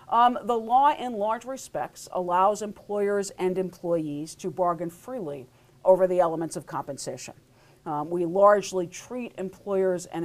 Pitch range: 150-195 Hz